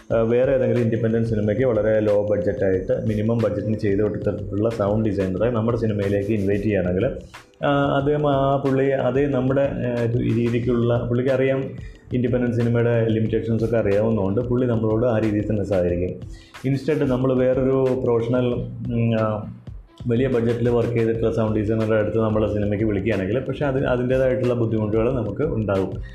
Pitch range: 105-120 Hz